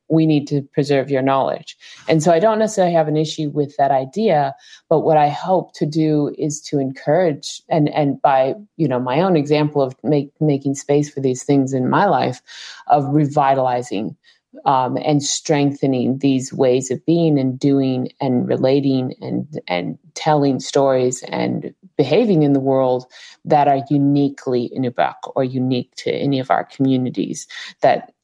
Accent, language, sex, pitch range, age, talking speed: American, English, female, 135-160 Hz, 30-49, 165 wpm